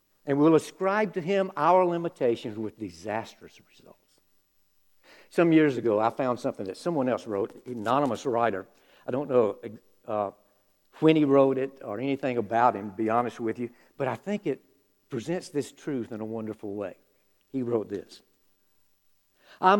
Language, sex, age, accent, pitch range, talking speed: English, male, 60-79, American, 105-155 Hz, 165 wpm